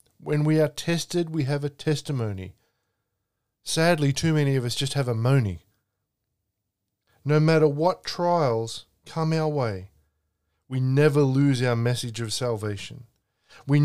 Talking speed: 140 wpm